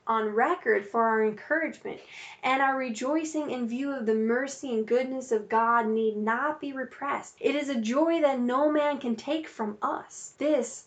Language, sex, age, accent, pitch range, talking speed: English, female, 10-29, American, 215-265 Hz, 180 wpm